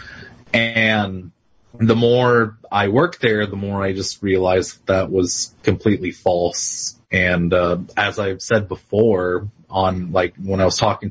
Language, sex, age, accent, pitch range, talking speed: English, male, 30-49, American, 95-115 Hz, 150 wpm